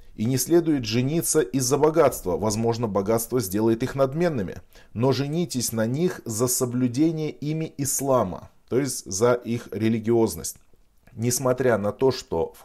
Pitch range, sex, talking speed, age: 110-140 Hz, male, 140 wpm, 20-39